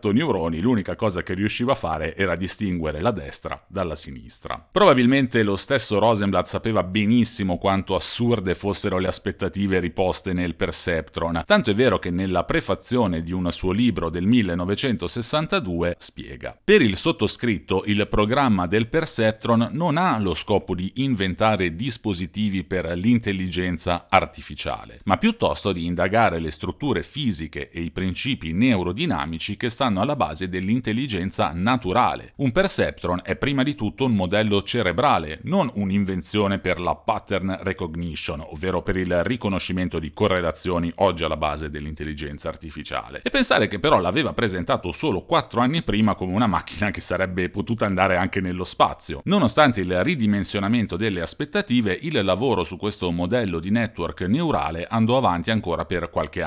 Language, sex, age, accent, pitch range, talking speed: Italian, male, 40-59, native, 90-110 Hz, 145 wpm